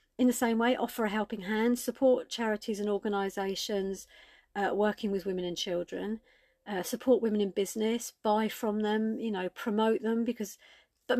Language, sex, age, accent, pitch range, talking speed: English, female, 40-59, British, 185-230 Hz, 165 wpm